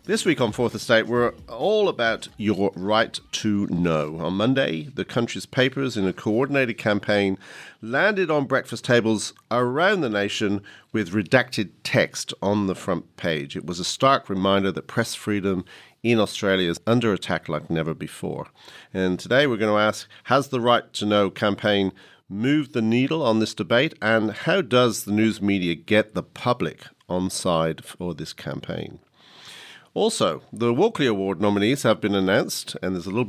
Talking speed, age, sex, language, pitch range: 170 wpm, 50-69, male, English, 90-115 Hz